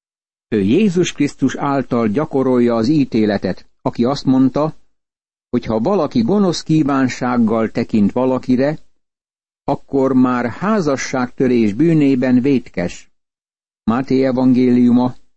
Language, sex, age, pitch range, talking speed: Hungarian, male, 60-79, 120-145 Hz, 95 wpm